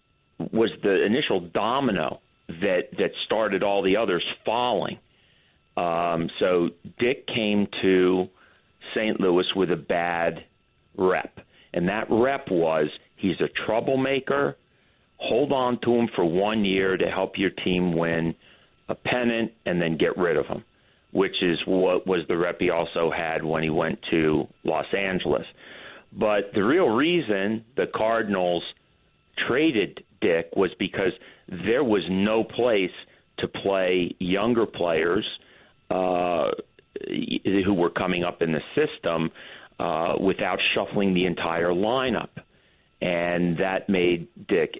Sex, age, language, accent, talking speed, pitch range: male, 40-59, English, American, 135 wpm, 85-100 Hz